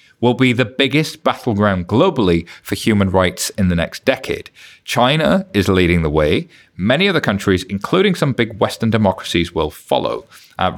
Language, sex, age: English, male, 30-49